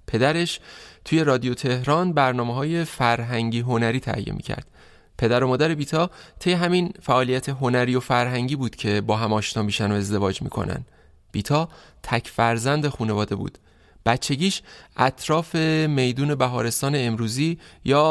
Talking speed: 135 wpm